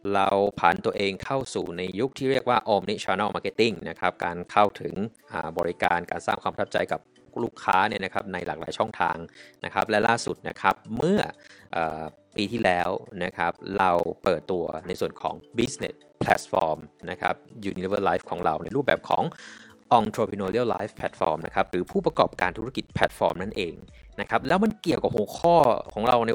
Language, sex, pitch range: Thai, male, 95-140 Hz